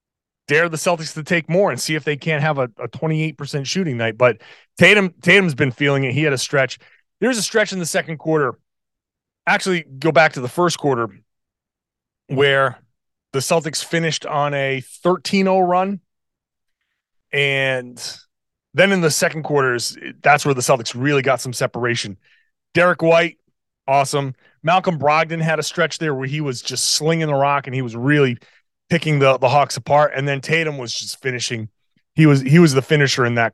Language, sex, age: English, male, 30-49